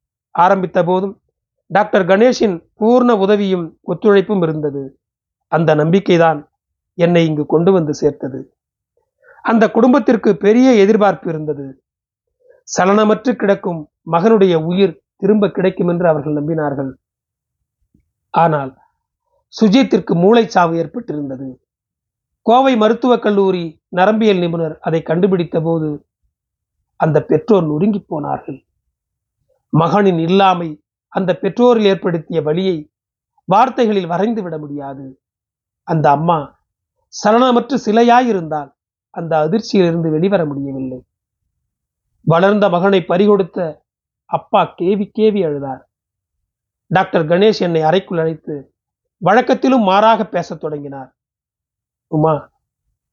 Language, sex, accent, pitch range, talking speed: Tamil, male, native, 150-210 Hz, 90 wpm